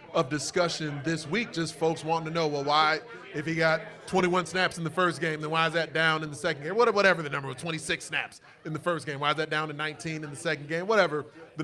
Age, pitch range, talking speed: 30-49, 150-175 Hz, 265 wpm